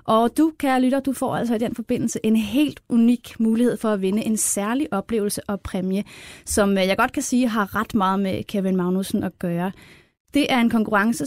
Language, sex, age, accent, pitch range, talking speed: Danish, female, 30-49, native, 195-245 Hz, 210 wpm